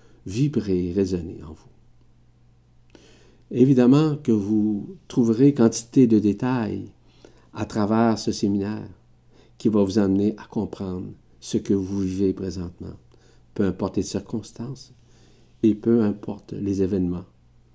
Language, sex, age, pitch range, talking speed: French, male, 50-69, 95-120 Hz, 120 wpm